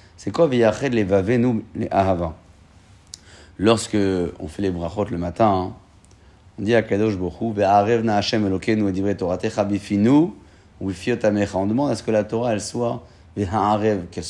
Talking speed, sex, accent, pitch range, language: 95 wpm, male, French, 95-115 Hz, French